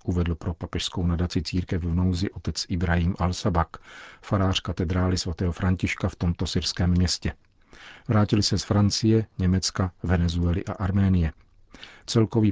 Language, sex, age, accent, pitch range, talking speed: Czech, male, 50-69, native, 90-100 Hz, 130 wpm